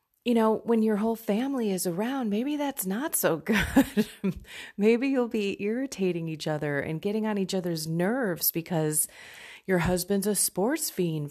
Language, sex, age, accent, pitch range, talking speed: English, female, 30-49, American, 145-190 Hz, 165 wpm